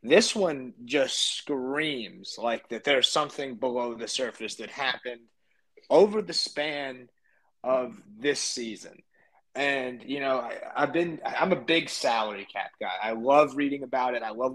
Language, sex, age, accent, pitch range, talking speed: English, male, 30-49, American, 120-145 Hz, 155 wpm